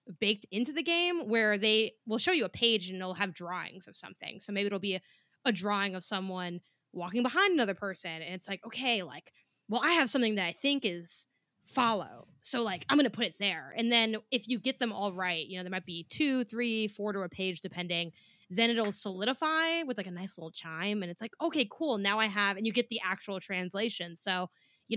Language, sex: English, female